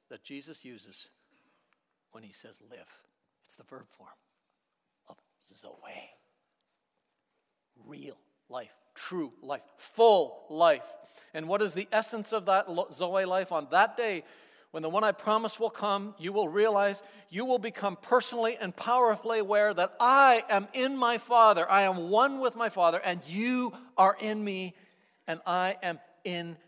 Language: English